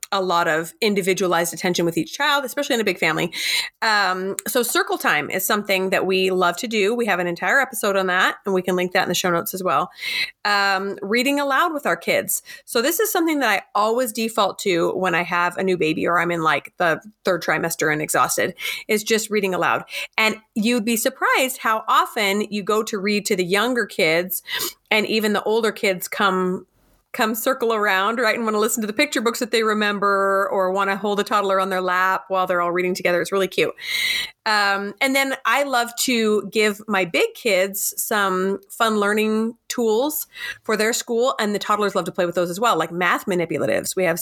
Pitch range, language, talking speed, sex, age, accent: 185-235 Hz, English, 215 wpm, female, 30-49, American